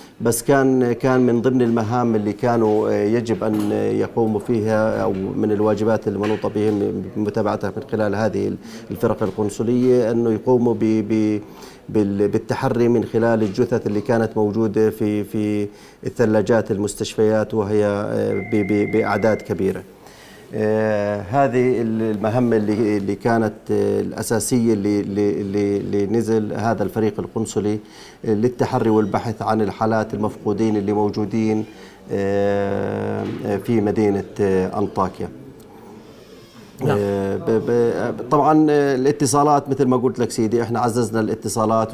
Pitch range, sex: 105-115 Hz, male